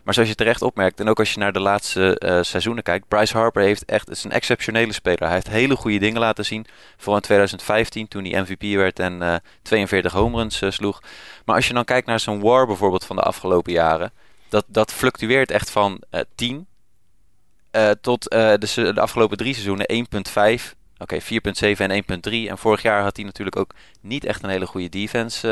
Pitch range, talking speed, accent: 100-115 Hz, 215 wpm, Dutch